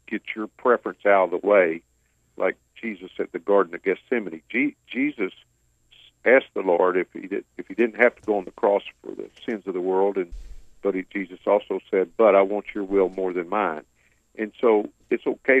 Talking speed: 210 wpm